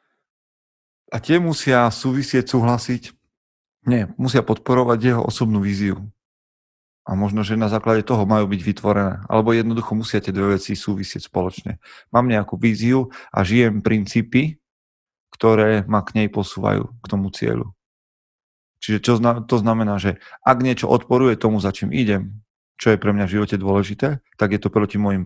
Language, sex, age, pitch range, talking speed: Slovak, male, 30-49, 100-120 Hz, 155 wpm